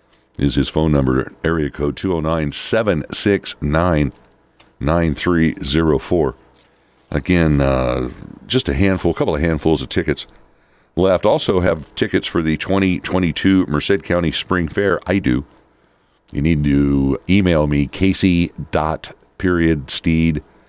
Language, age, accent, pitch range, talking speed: English, 60-79, American, 70-90 Hz, 115 wpm